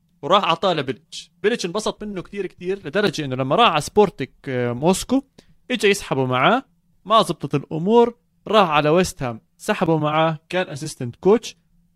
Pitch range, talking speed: 140-190 Hz, 155 wpm